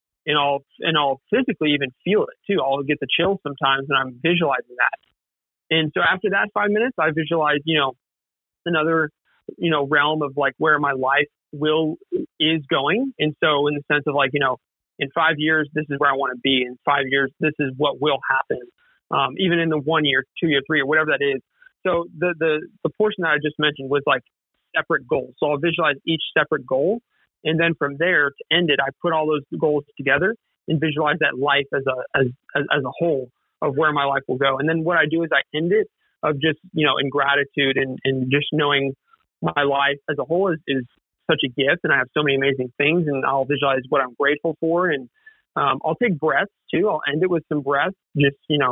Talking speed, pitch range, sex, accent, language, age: 230 wpm, 140-165 Hz, male, American, English, 40-59